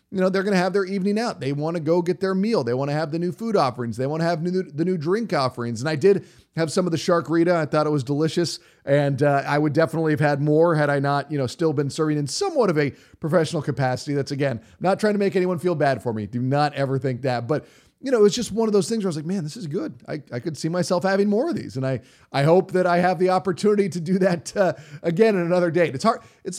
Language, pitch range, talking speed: English, 135-170 Hz, 300 wpm